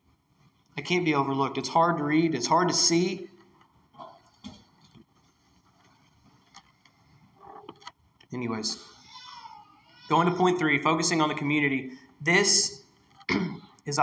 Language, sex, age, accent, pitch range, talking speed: English, male, 20-39, American, 145-190 Hz, 100 wpm